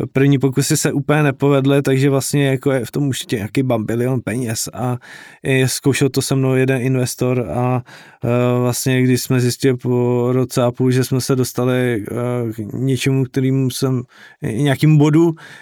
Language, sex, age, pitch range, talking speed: Slovak, male, 20-39, 125-140 Hz, 160 wpm